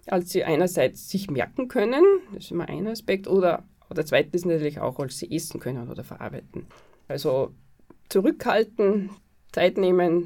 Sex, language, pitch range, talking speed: female, German, 175-225 Hz, 150 wpm